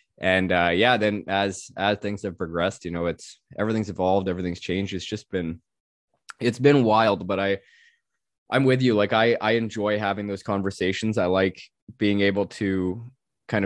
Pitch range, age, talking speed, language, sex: 90-110 Hz, 20-39, 175 wpm, English, male